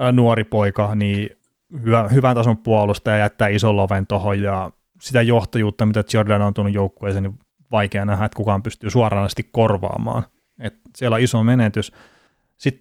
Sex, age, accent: male, 30-49, native